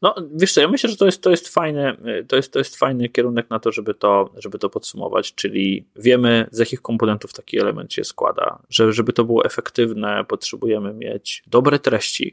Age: 20-39